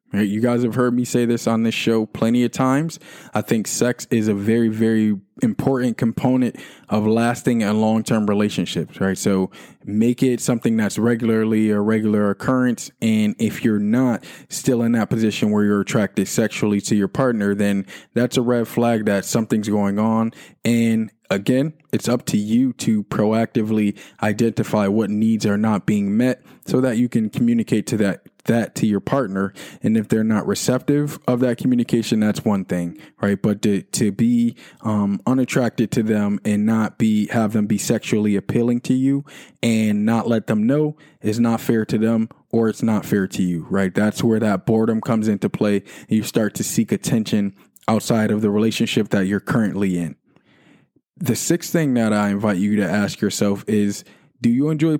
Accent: American